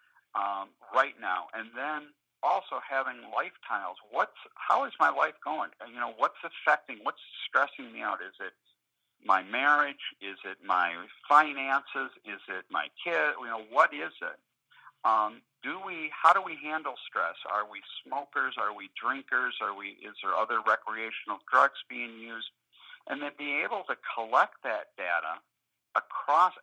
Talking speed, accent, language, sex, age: 160 wpm, American, English, male, 50-69